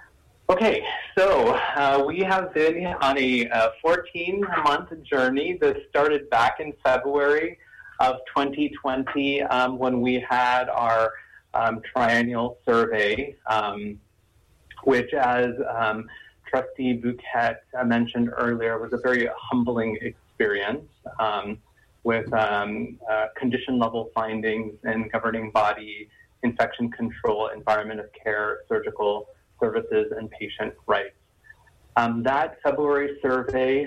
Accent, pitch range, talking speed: American, 110-140 Hz, 110 wpm